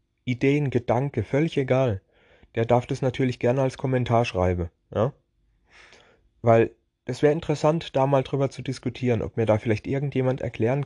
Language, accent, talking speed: German, German, 155 wpm